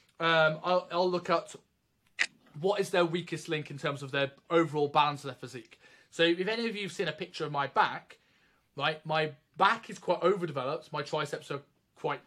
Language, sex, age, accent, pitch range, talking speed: English, male, 20-39, British, 140-175 Hz, 205 wpm